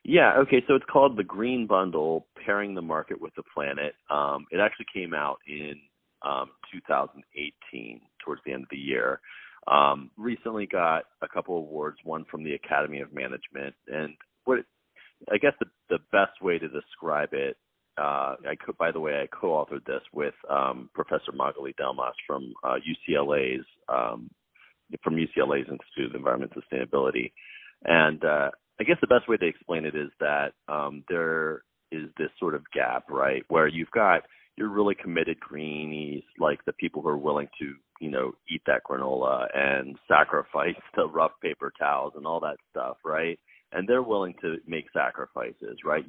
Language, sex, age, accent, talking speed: English, male, 30-49, American, 175 wpm